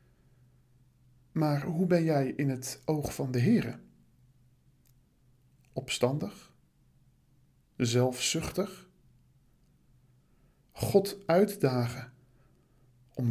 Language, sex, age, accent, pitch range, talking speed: Dutch, male, 50-69, Dutch, 125-180 Hz, 70 wpm